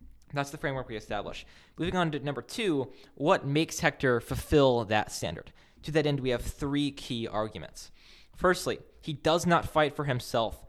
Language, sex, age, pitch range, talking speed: English, male, 20-39, 125-160 Hz, 175 wpm